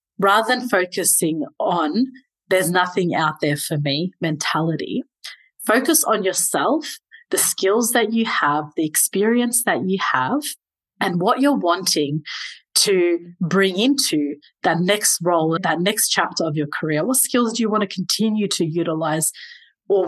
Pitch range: 170-240 Hz